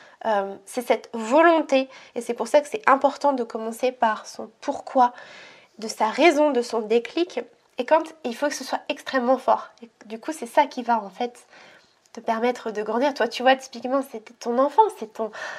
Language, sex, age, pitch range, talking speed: French, female, 20-39, 230-290 Hz, 210 wpm